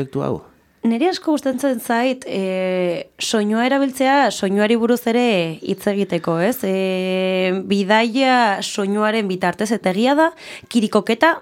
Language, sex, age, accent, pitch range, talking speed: English, female, 20-39, Spanish, 190-235 Hz, 100 wpm